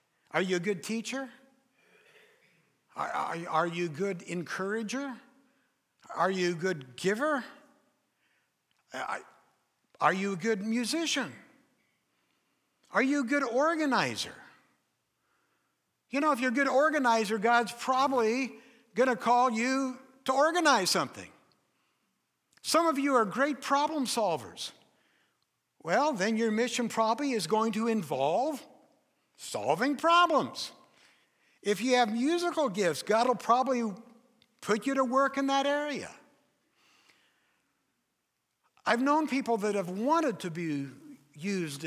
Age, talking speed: 60-79, 120 wpm